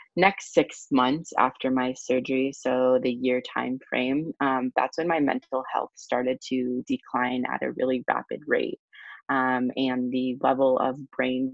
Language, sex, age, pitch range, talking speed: English, female, 20-39, 125-140 Hz, 160 wpm